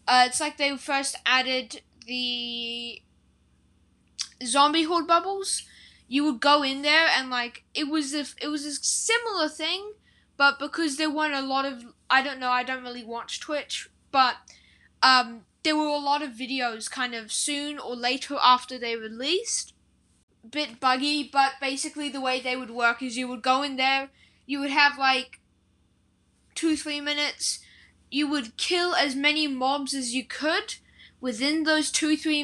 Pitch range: 250-300 Hz